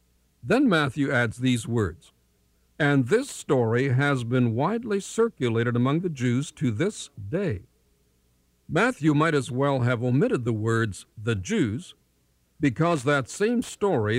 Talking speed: 135 wpm